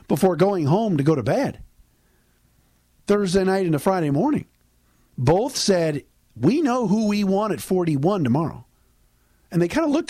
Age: 50-69